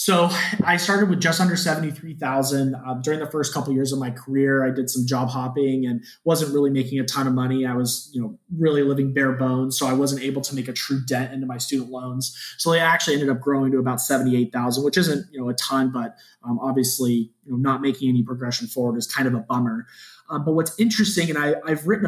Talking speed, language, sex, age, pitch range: 240 wpm, English, male, 20-39, 130-160 Hz